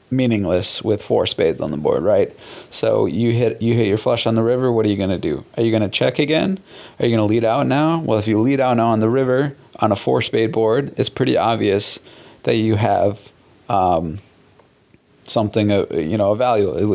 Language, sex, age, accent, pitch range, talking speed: English, male, 30-49, American, 105-120 Hz, 225 wpm